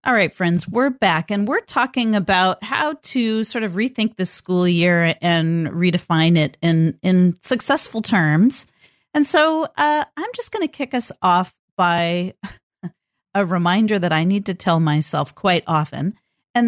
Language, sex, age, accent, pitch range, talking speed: English, female, 40-59, American, 165-200 Hz, 165 wpm